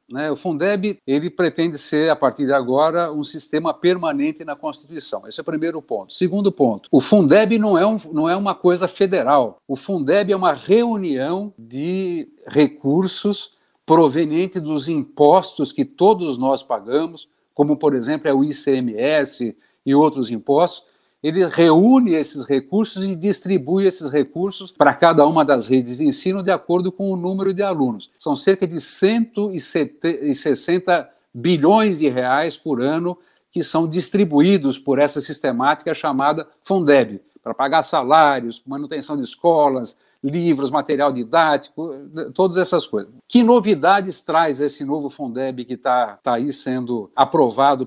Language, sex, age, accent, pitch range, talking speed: Portuguese, male, 60-79, Brazilian, 140-185 Hz, 145 wpm